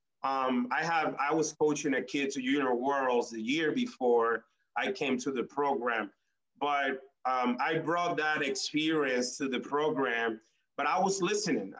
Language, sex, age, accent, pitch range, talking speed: English, male, 30-49, American, 130-155 Hz, 165 wpm